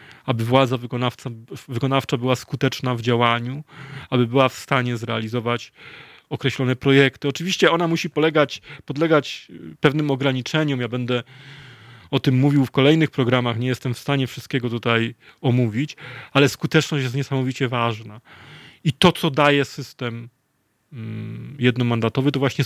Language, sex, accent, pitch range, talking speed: Polish, male, native, 120-145 Hz, 125 wpm